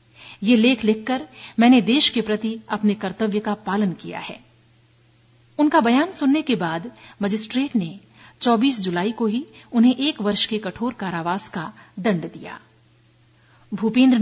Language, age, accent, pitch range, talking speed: Hindi, 50-69, native, 185-240 Hz, 145 wpm